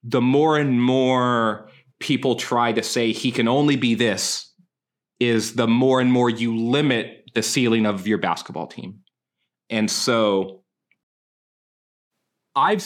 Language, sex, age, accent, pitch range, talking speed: English, male, 30-49, American, 115-160 Hz, 135 wpm